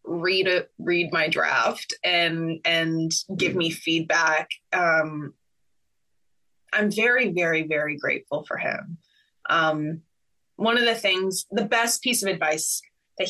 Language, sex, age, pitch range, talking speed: English, female, 20-39, 160-210 Hz, 130 wpm